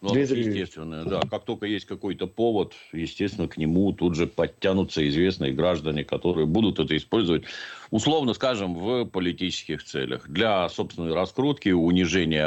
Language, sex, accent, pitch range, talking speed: Russian, male, native, 80-105 Hz, 135 wpm